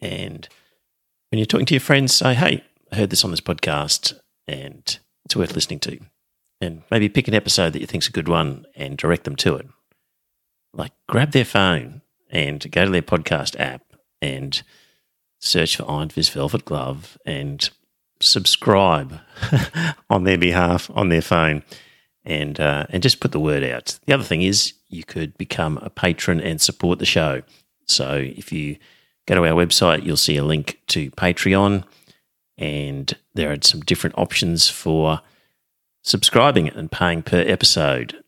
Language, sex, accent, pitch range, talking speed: English, male, Australian, 75-100 Hz, 170 wpm